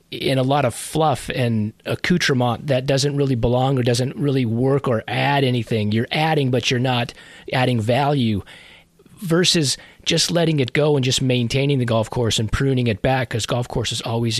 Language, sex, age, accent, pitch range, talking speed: English, male, 30-49, American, 120-145 Hz, 185 wpm